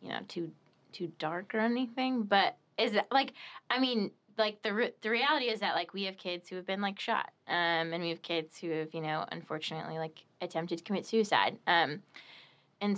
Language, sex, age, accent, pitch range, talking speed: English, female, 20-39, American, 155-190 Hz, 210 wpm